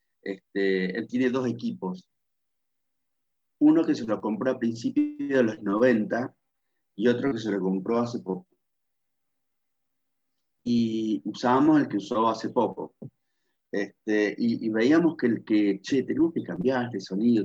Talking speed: 150 wpm